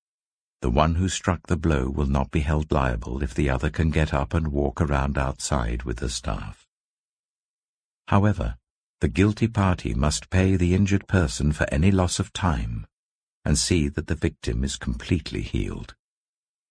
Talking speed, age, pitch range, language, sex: 165 wpm, 60-79, 70-100 Hz, English, male